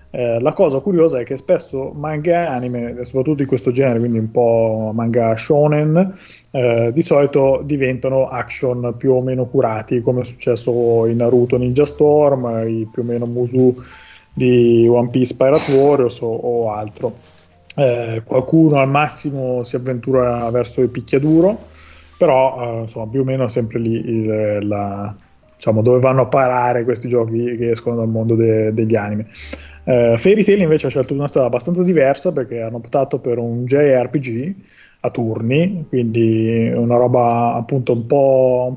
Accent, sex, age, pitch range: native, male, 20-39, 115-140 Hz